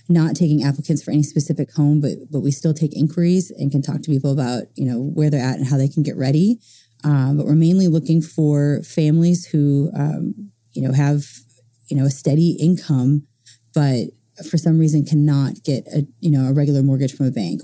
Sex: female